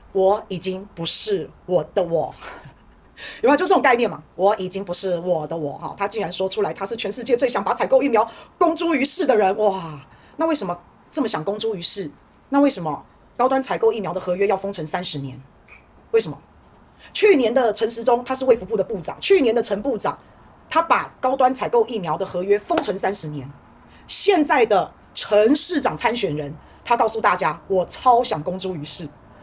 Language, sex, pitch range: Chinese, female, 185-270 Hz